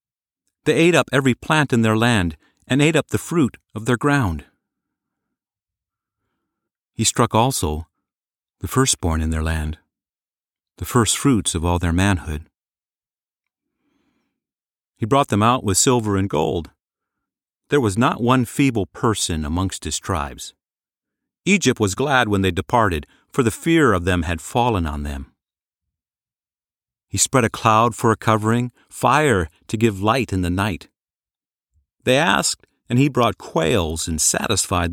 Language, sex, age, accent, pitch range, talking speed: English, male, 50-69, American, 85-125 Hz, 145 wpm